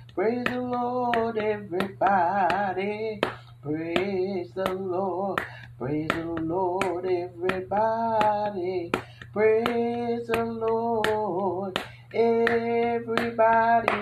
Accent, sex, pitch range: American, male, 180-225 Hz